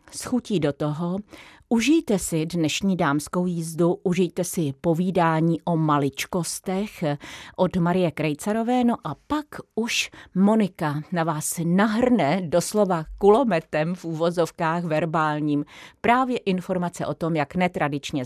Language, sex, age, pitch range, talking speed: Czech, female, 40-59, 160-215 Hz, 115 wpm